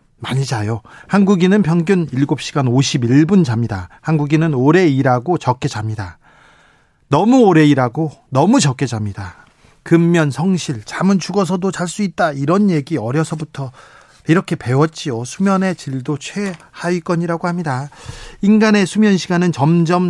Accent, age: native, 40-59